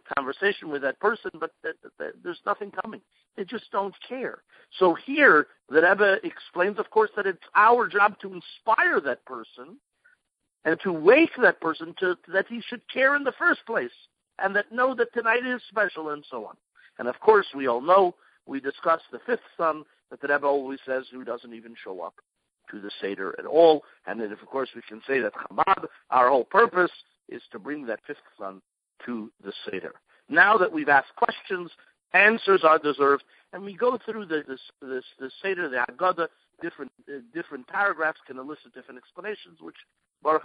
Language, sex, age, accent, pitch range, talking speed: English, male, 50-69, American, 130-200 Hz, 195 wpm